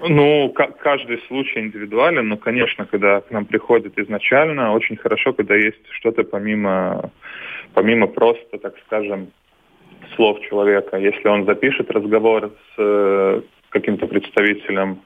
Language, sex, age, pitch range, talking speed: Russian, male, 20-39, 105-150 Hz, 130 wpm